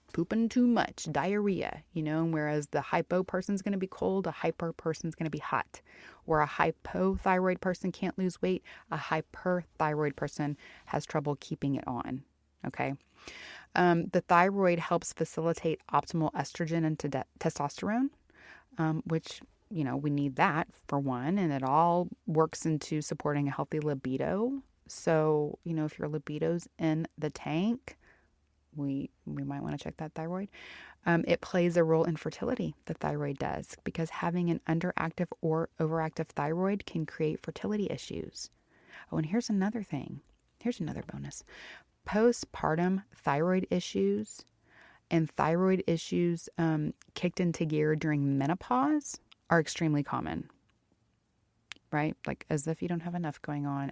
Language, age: English, 30-49